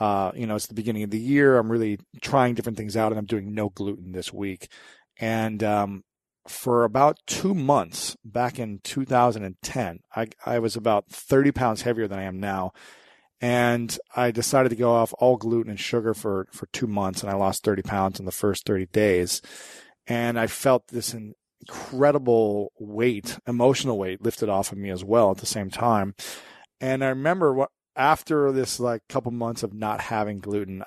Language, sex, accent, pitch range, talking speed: English, male, American, 105-125 Hz, 190 wpm